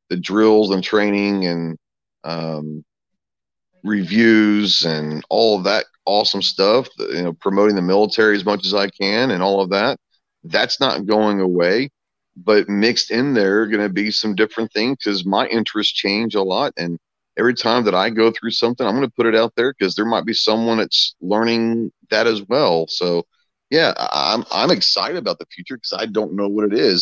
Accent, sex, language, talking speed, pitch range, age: American, male, English, 195 wpm, 95-110 Hz, 40-59